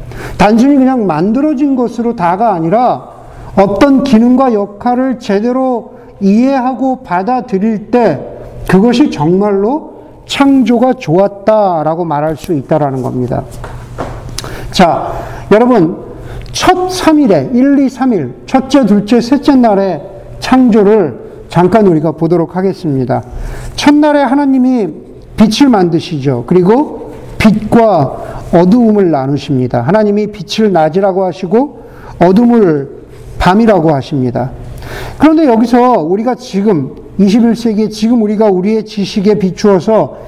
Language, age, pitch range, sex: Korean, 50-69, 170-245 Hz, male